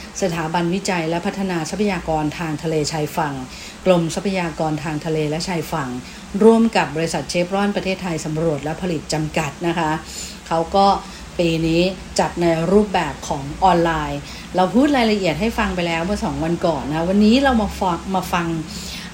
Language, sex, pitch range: English, female, 165-205 Hz